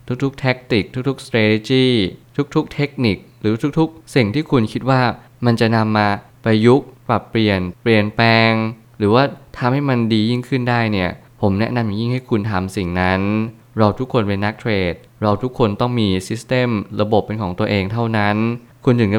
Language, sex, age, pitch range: Thai, male, 20-39, 105-120 Hz